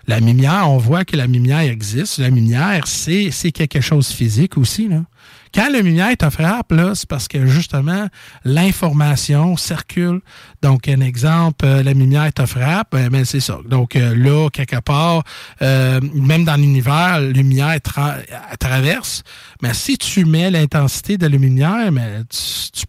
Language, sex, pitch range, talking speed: French, male, 130-165 Hz, 170 wpm